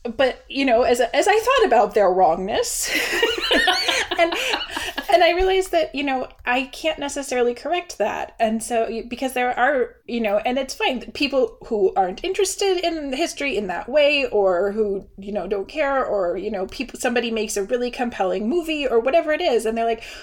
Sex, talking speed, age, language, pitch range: female, 190 wpm, 30-49, English, 220-300 Hz